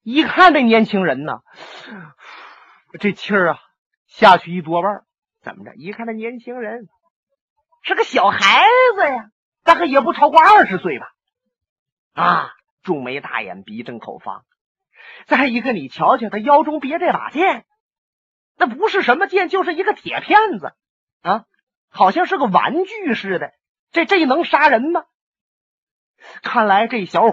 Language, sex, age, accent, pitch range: Chinese, male, 30-49, native, 200-335 Hz